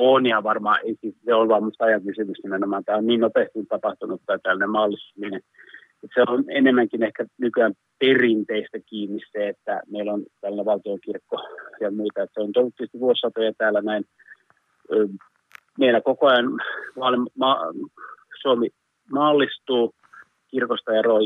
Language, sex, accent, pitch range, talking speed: Finnish, male, native, 105-125 Hz, 125 wpm